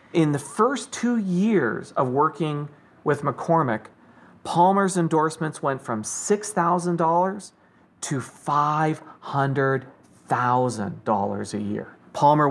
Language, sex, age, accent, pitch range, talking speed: English, male, 40-59, American, 130-175 Hz, 90 wpm